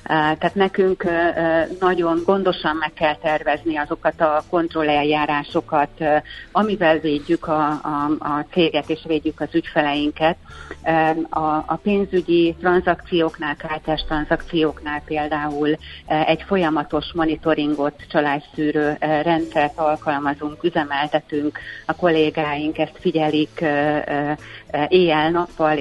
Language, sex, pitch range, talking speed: Hungarian, female, 150-165 Hz, 90 wpm